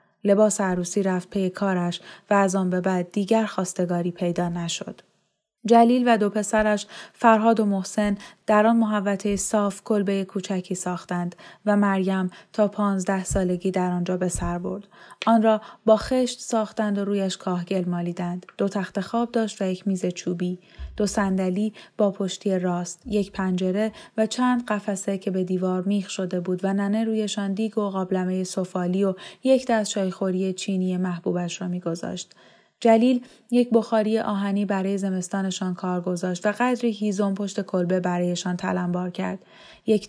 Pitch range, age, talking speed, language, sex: 185-215 Hz, 10-29, 155 wpm, Persian, female